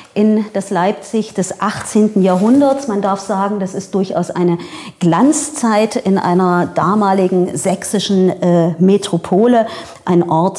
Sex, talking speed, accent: female, 125 wpm, German